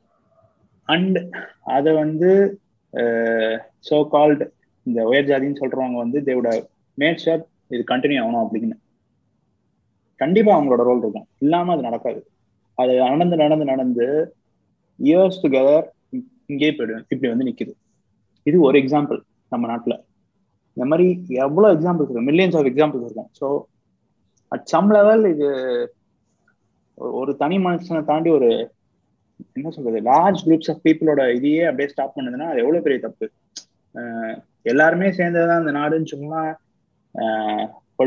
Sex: male